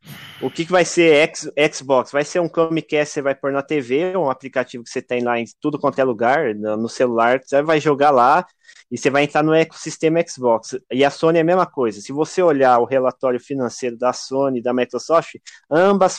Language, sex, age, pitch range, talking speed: Portuguese, male, 20-39, 125-165 Hz, 220 wpm